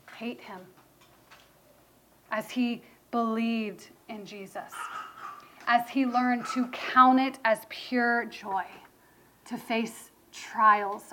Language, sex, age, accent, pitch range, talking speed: English, female, 30-49, American, 230-280 Hz, 100 wpm